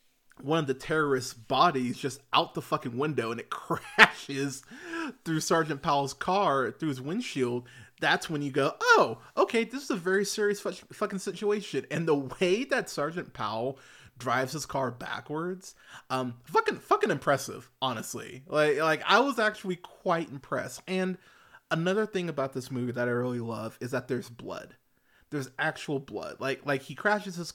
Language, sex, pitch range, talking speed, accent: English, male, 125-165 Hz, 170 wpm, American